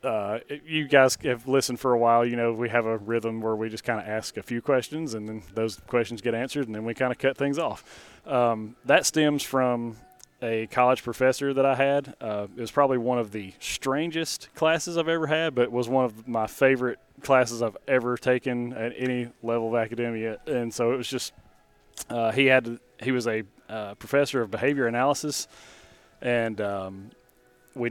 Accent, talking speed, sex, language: American, 200 wpm, male, English